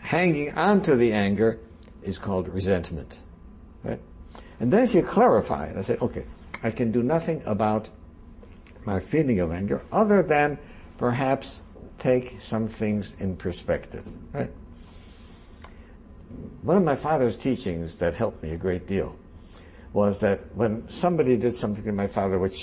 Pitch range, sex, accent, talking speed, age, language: 80-120 Hz, male, American, 150 wpm, 60-79, German